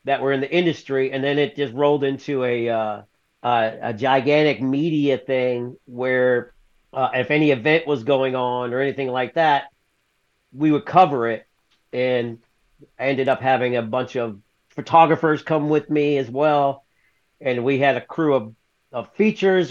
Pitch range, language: 125-165 Hz, English